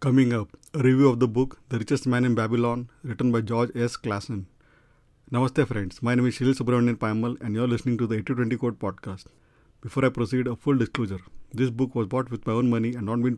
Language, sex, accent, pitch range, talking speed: English, male, Indian, 115-130 Hz, 230 wpm